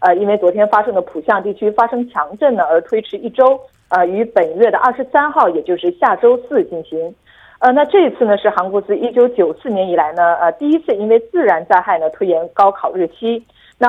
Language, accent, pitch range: Korean, Chinese, 180-255 Hz